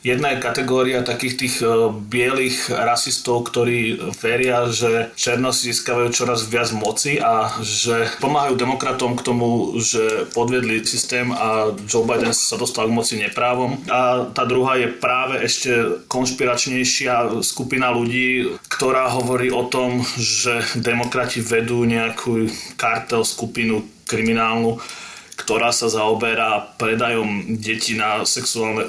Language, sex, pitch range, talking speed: Slovak, male, 115-125 Hz, 125 wpm